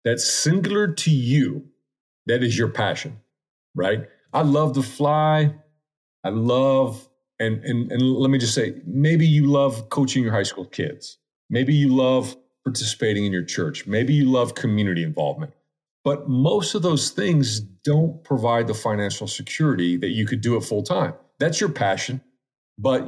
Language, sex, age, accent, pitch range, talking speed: English, male, 40-59, American, 110-145 Hz, 165 wpm